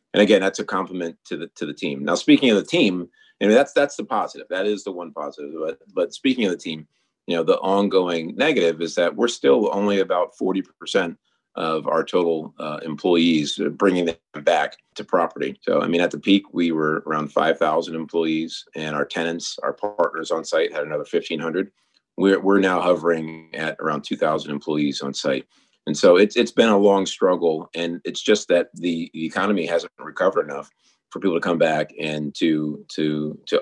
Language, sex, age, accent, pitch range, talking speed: English, male, 40-59, American, 80-105 Hz, 200 wpm